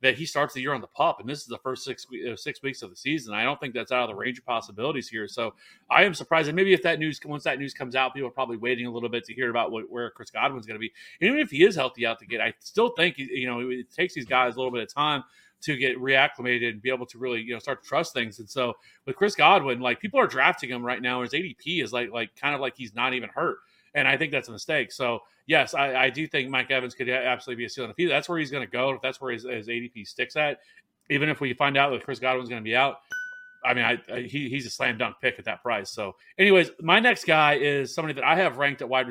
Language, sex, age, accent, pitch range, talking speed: English, male, 30-49, American, 125-150 Hz, 300 wpm